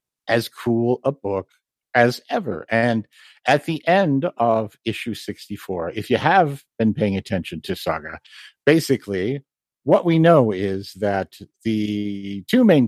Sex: male